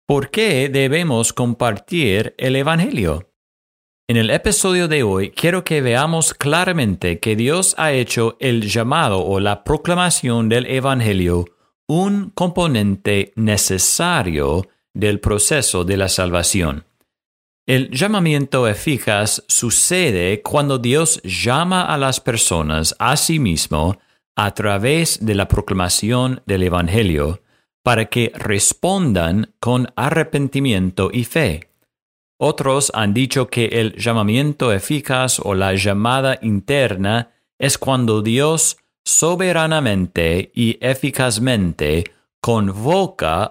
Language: Spanish